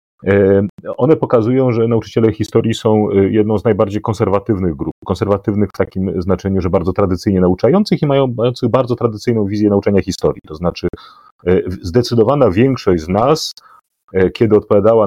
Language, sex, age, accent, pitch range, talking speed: Polish, male, 40-59, native, 95-115 Hz, 135 wpm